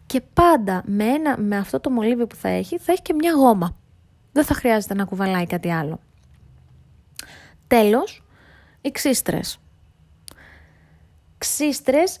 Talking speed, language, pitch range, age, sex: 135 wpm, Greek, 185-265 Hz, 20-39, female